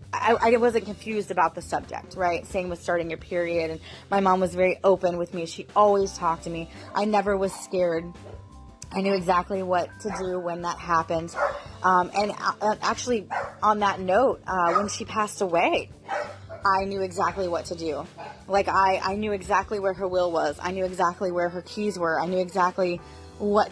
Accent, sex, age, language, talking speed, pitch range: American, female, 20-39, English, 190 wpm, 185-280 Hz